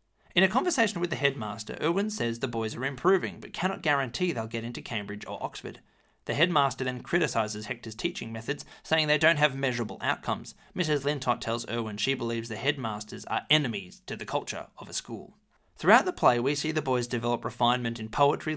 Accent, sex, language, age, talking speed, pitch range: Australian, male, English, 20-39, 195 wpm, 110-145 Hz